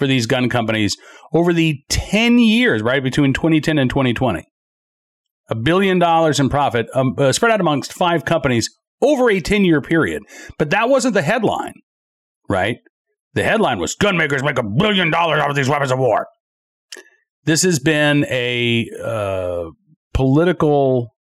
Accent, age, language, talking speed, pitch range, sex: American, 40-59, English, 155 wpm, 125-175 Hz, male